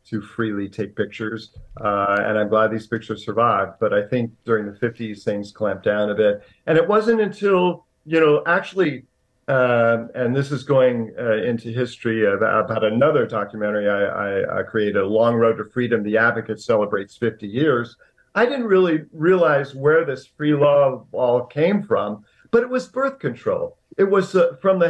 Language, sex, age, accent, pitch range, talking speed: English, male, 50-69, American, 110-160 Hz, 180 wpm